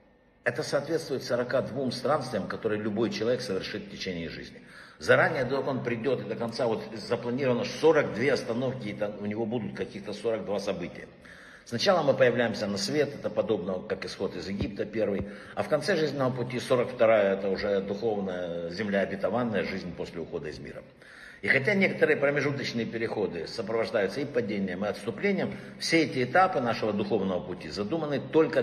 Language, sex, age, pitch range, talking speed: Russian, male, 60-79, 115-155 Hz, 155 wpm